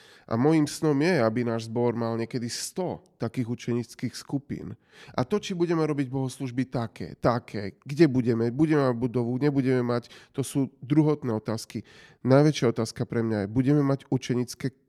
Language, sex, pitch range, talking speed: Slovak, male, 120-150 Hz, 160 wpm